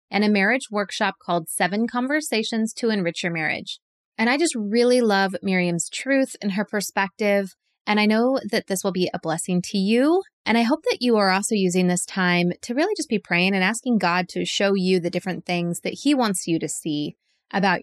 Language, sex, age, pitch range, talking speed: English, female, 20-39, 185-245 Hz, 210 wpm